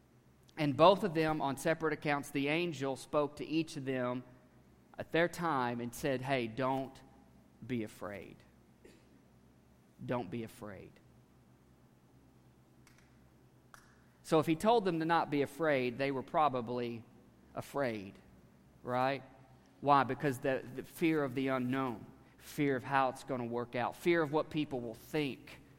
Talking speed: 145 wpm